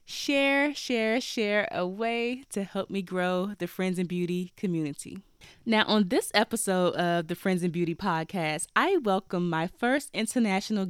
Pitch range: 175-220 Hz